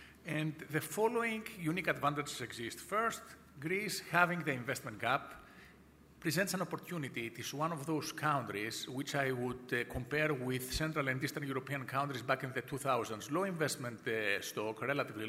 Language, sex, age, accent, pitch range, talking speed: English, male, 50-69, Spanish, 125-160 Hz, 160 wpm